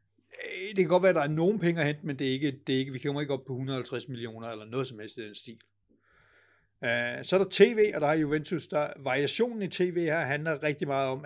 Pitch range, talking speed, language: 125-160 Hz, 260 wpm, Danish